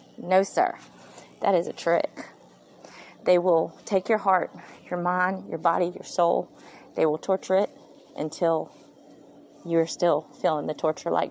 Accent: American